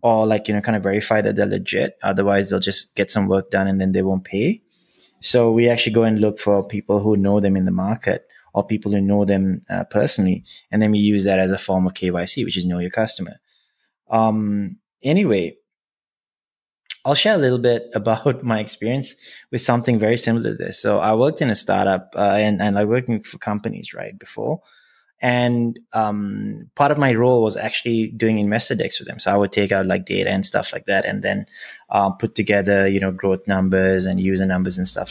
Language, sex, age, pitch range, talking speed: English, male, 20-39, 95-115 Hz, 220 wpm